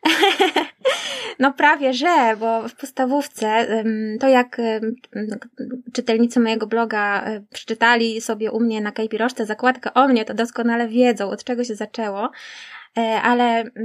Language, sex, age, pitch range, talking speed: Polish, female, 20-39, 215-250 Hz, 120 wpm